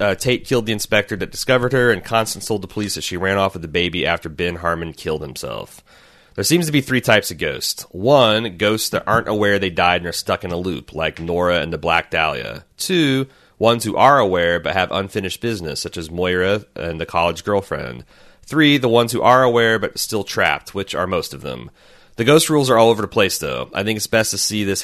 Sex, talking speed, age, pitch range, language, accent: male, 235 wpm, 30-49, 90-110 Hz, English, American